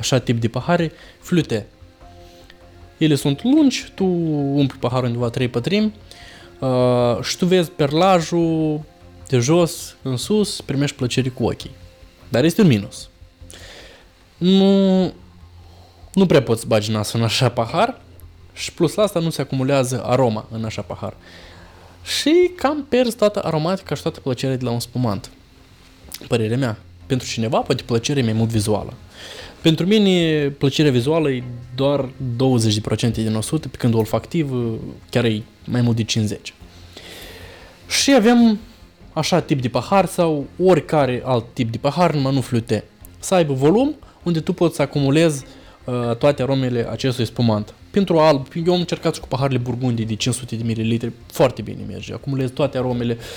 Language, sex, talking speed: Romanian, male, 145 wpm